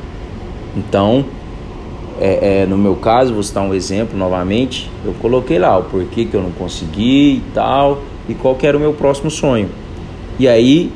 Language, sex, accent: Portuguese, male, Brazilian